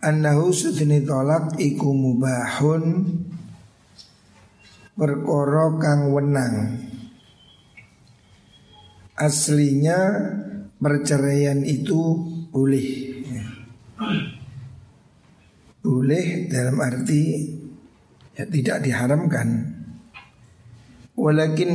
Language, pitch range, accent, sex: Indonesian, 125-150 Hz, native, male